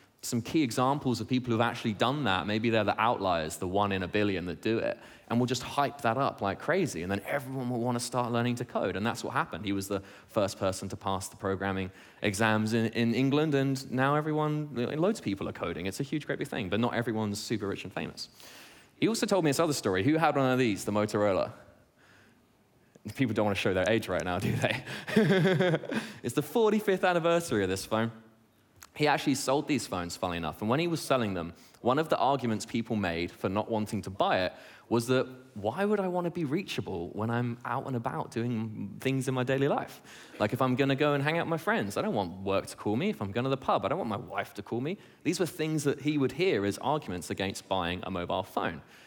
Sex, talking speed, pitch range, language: male, 245 wpm, 100-140 Hz, English